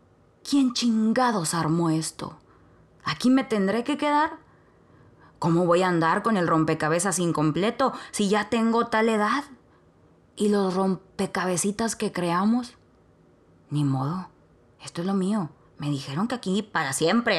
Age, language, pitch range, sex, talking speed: 20-39, Spanish, 170-230 Hz, female, 135 wpm